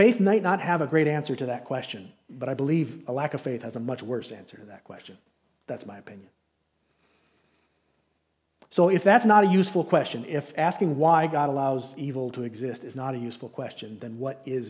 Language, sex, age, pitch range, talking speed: English, male, 40-59, 120-160 Hz, 210 wpm